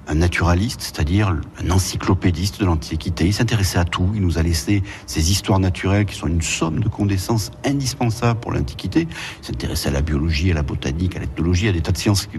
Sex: male